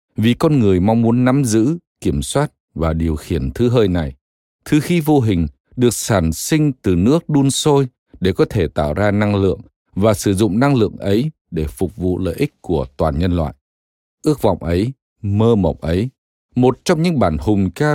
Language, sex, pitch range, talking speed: Vietnamese, male, 85-120 Hz, 200 wpm